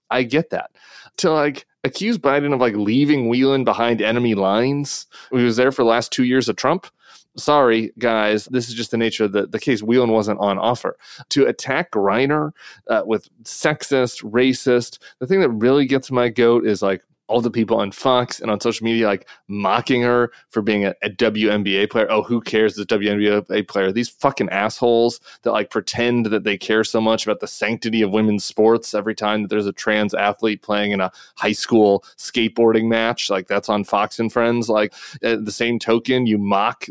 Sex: male